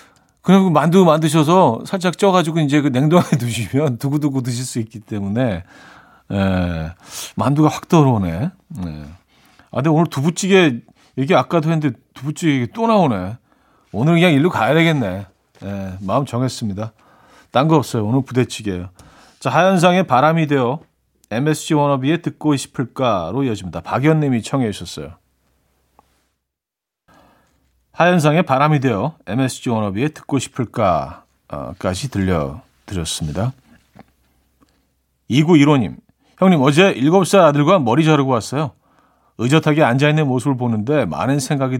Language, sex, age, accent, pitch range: Korean, male, 40-59, native, 105-155 Hz